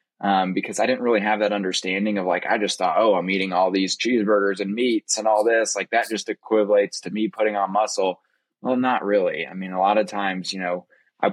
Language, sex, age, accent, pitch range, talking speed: English, male, 20-39, American, 95-115 Hz, 240 wpm